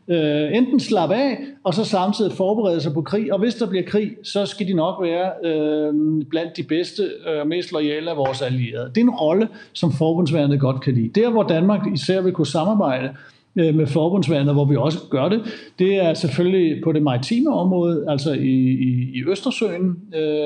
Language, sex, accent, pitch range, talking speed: Danish, male, native, 145-185 Hz, 200 wpm